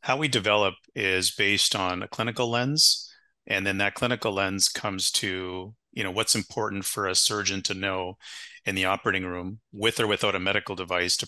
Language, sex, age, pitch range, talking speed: English, male, 30-49, 95-110 Hz, 190 wpm